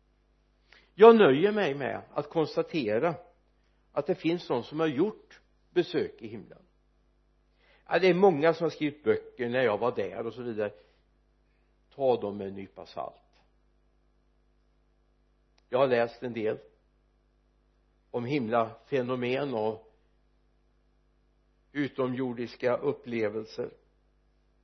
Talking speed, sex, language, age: 115 wpm, male, Swedish, 60-79